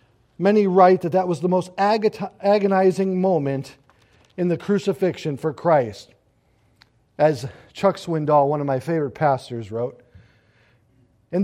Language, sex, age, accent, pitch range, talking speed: English, male, 50-69, American, 115-190 Hz, 125 wpm